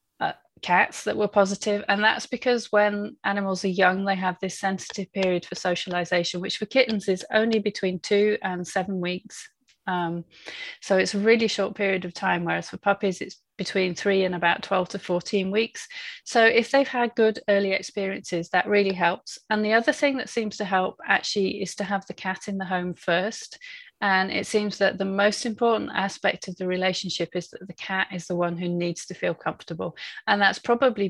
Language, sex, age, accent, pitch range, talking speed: English, female, 30-49, British, 175-205 Hz, 200 wpm